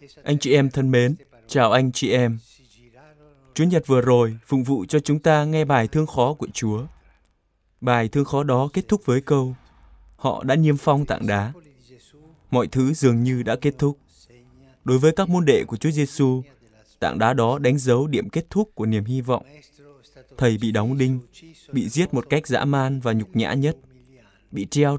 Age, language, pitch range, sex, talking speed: 20-39, Vietnamese, 120-155 Hz, male, 195 wpm